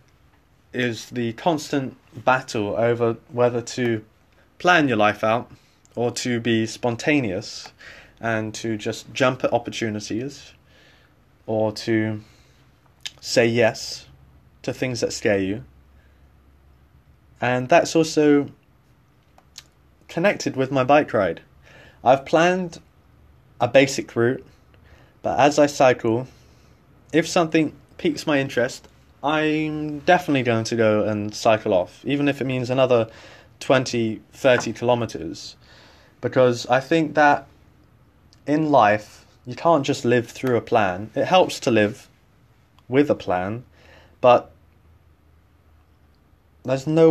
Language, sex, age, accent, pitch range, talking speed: English, male, 20-39, British, 100-130 Hz, 115 wpm